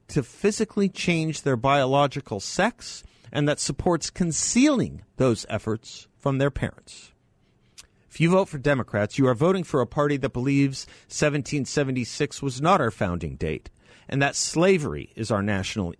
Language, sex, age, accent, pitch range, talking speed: English, male, 50-69, American, 110-150 Hz, 150 wpm